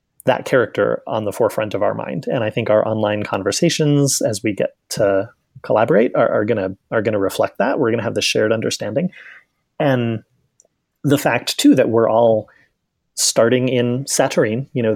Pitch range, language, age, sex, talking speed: 115-145 Hz, English, 30-49, male, 175 wpm